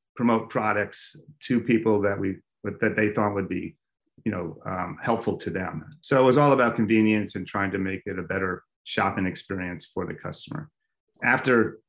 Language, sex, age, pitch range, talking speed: English, male, 30-49, 100-120 Hz, 180 wpm